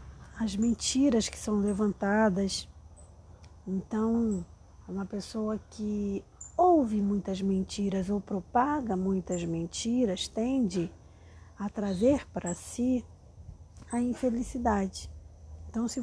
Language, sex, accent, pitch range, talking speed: Portuguese, female, Brazilian, 185-245 Hz, 95 wpm